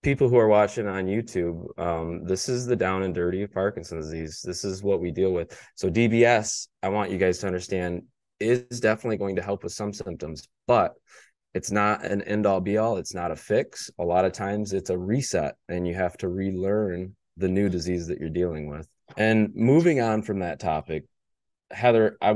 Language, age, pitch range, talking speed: English, 20-39, 90-110 Hz, 200 wpm